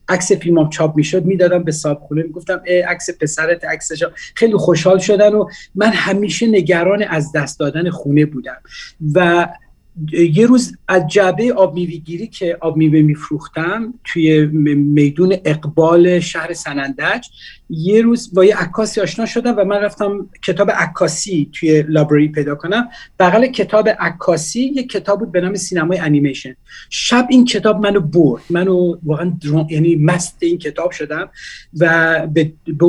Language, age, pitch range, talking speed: English, 40-59, 155-200 Hz, 160 wpm